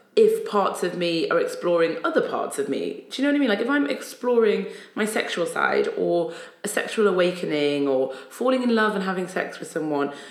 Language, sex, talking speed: English, female, 210 wpm